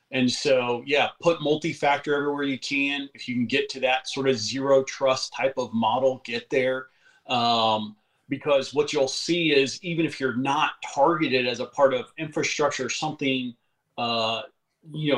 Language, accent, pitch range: English, American, 120-140 Hz